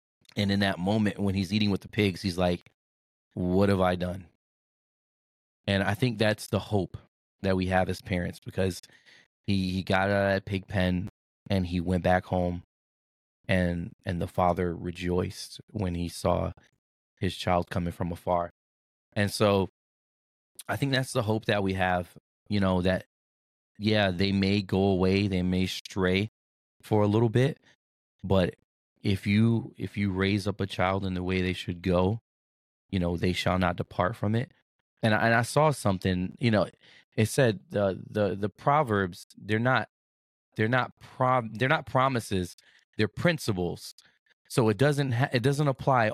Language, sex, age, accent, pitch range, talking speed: English, male, 20-39, American, 90-110 Hz, 175 wpm